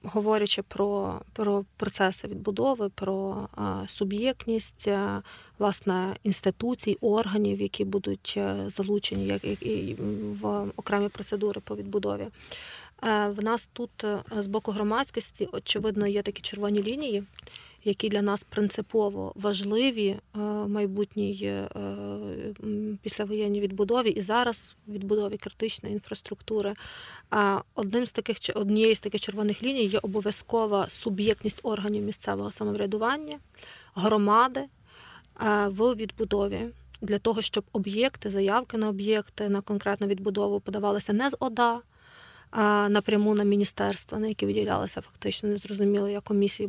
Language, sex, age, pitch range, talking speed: Ukrainian, female, 30-49, 200-215 Hz, 110 wpm